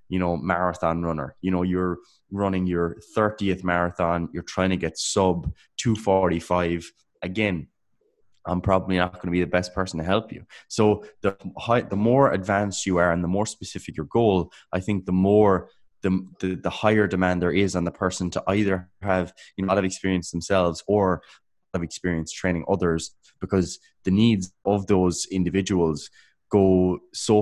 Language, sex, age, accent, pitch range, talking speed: English, male, 20-39, Irish, 85-95 Hz, 175 wpm